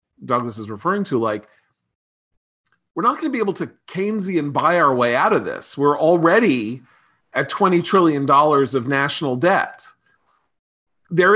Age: 40-59